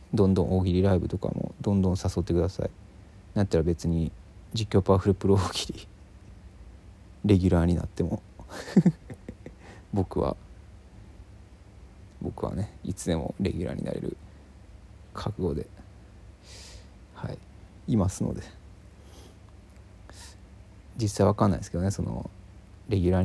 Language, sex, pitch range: Japanese, male, 90-100 Hz